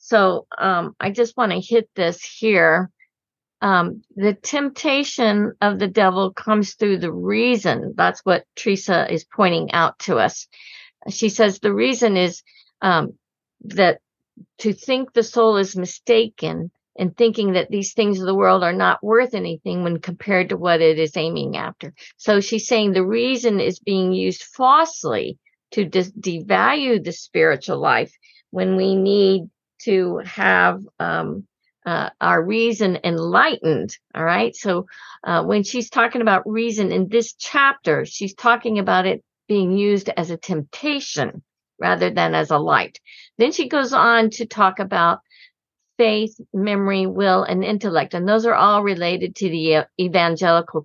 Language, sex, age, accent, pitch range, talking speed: English, female, 50-69, American, 185-230 Hz, 155 wpm